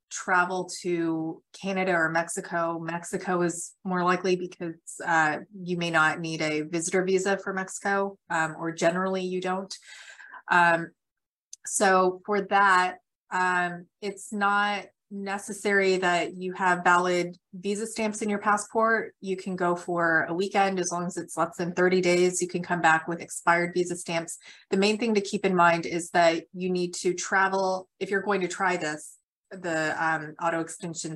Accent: American